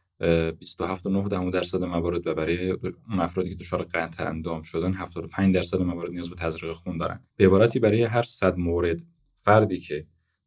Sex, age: male, 20-39